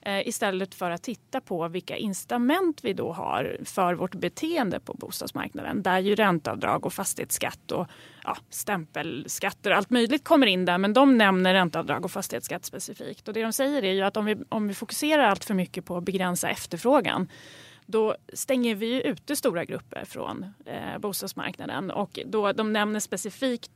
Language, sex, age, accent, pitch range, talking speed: Swedish, female, 30-49, native, 185-235 Hz, 175 wpm